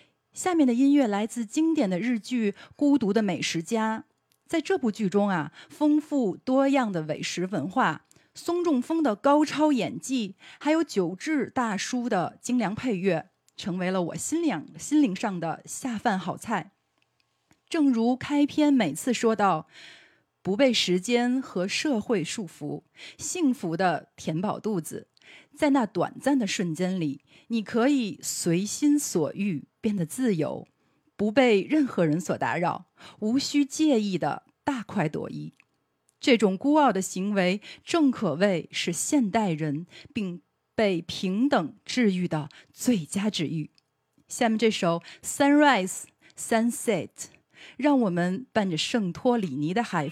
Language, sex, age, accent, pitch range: Chinese, female, 30-49, native, 180-265 Hz